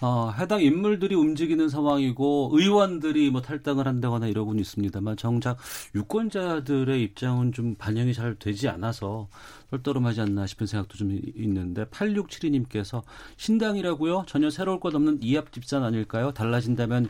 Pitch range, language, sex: 110-150 Hz, Korean, male